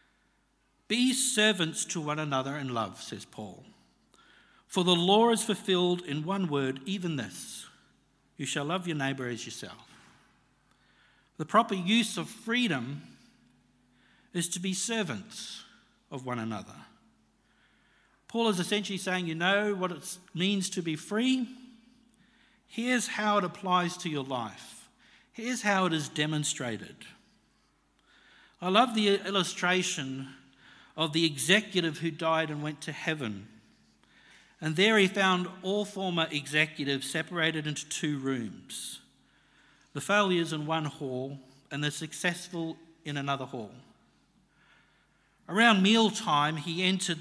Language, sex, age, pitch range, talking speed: English, male, 60-79, 150-200 Hz, 130 wpm